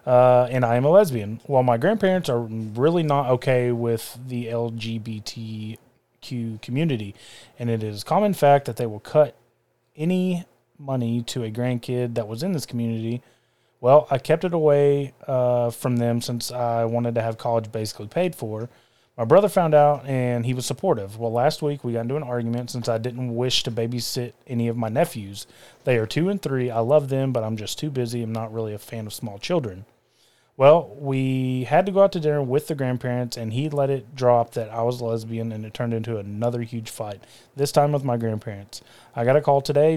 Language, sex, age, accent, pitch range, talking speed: English, male, 30-49, American, 115-140 Hz, 210 wpm